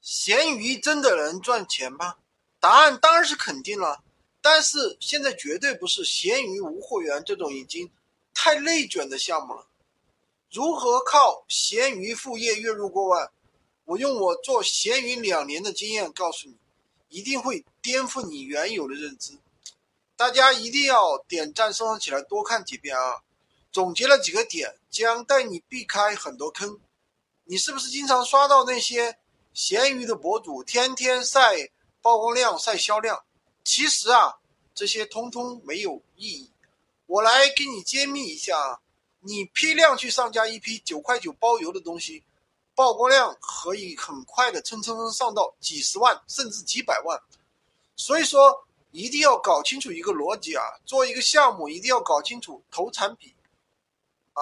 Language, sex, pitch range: Chinese, male, 225-300 Hz